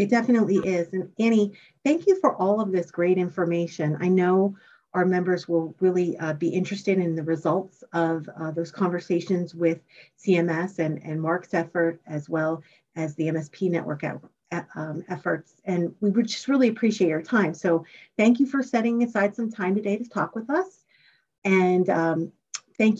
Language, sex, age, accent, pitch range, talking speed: English, female, 40-59, American, 175-225 Hz, 175 wpm